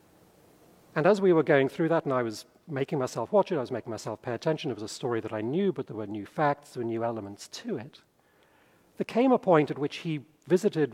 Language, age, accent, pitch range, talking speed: English, 40-59, British, 120-170 Hz, 250 wpm